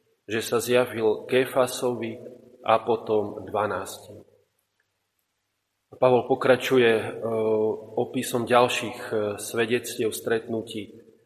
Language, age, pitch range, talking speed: Slovak, 30-49, 105-120 Hz, 70 wpm